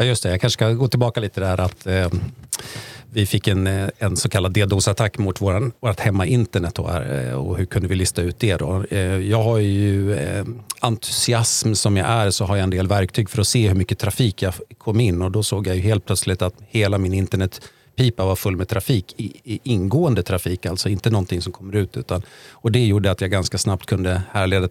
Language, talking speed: Swedish, 225 wpm